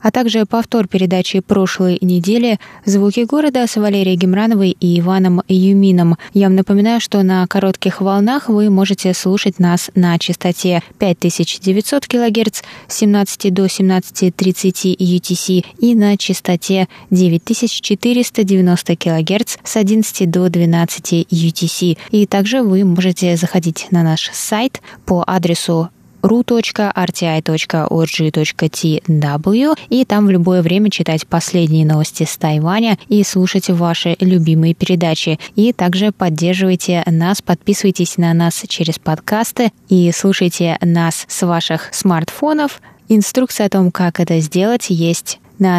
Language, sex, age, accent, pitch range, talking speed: Russian, female, 20-39, native, 170-205 Hz, 120 wpm